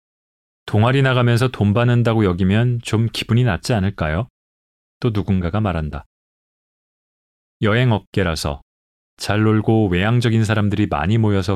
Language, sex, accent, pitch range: Korean, male, native, 85-120 Hz